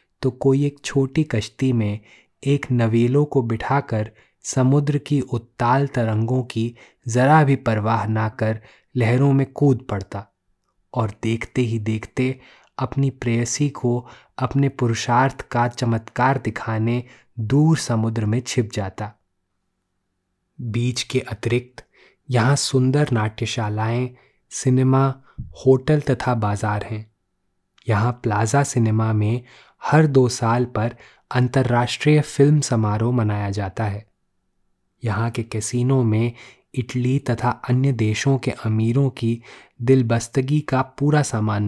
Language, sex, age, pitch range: Hindi, male, 20-39, 110-130 Hz